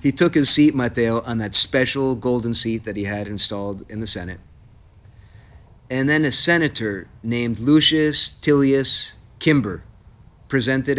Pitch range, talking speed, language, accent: 100-130 Hz, 140 wpm, English, American